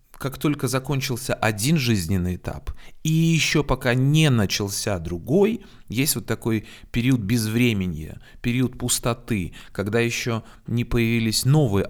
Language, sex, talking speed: Russian, male, 120 wpm